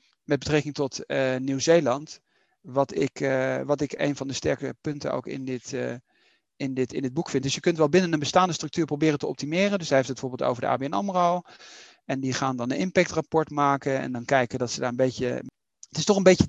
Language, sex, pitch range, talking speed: Dutch, male, 130-155 Hz, 215 wpm